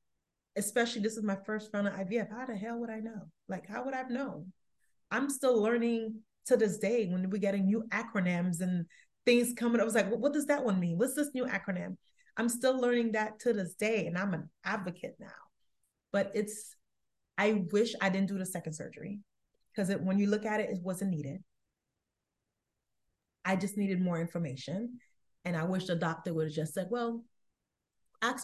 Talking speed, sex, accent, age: 200 wpm, female, American, 30-49